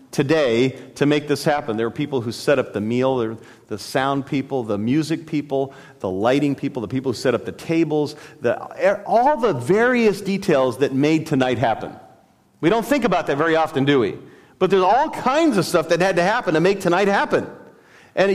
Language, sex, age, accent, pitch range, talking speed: English, male, 40-59, American, 135-180 Hz, 205 wpm